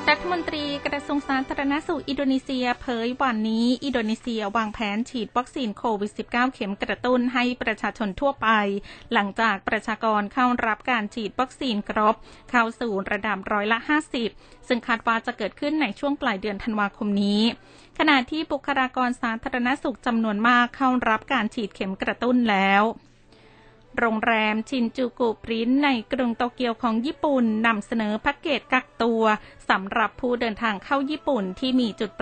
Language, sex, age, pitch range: Thai, female, 20-39, 215-255 Hz